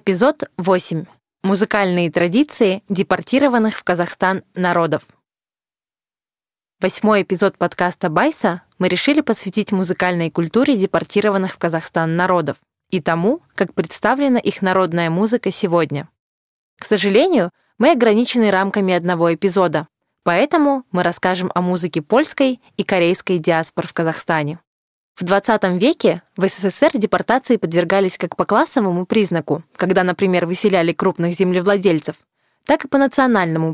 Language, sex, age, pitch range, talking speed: Russian, female, 20-39, 175-220 Hz, 120 wpm